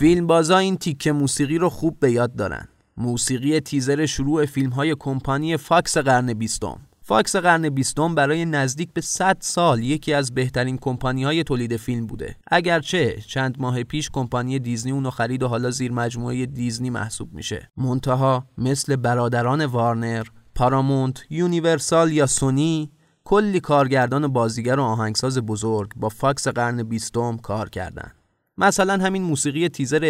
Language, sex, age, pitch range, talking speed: Persian, male, 20-39, 120-150 Hz, 140 wpm